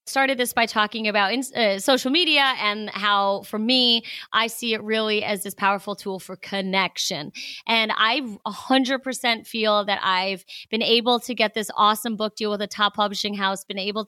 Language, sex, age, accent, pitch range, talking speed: English, female, 30-49, American, 205-265 Hz, 190 wpm